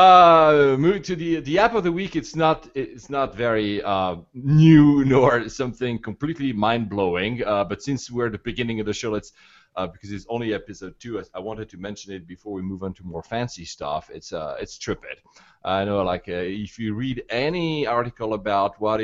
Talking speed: 210 wpm